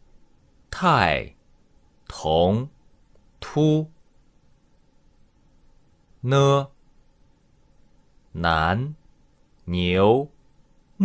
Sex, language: male, Chinese